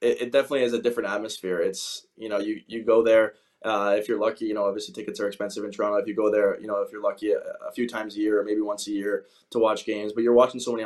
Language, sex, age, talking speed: English, male, 20-39, 285 wpm